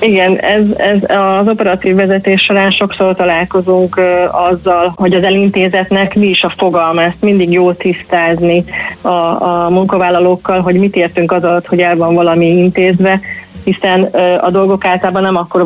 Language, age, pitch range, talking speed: Hungarian, 30-49, 175-195 Hz, 155 wpm